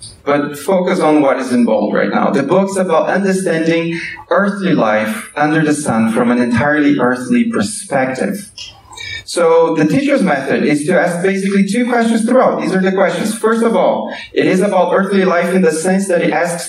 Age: 30-49